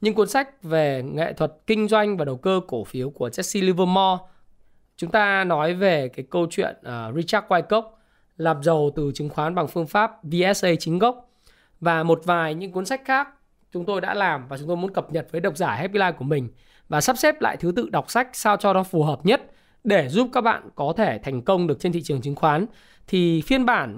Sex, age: male, 20-39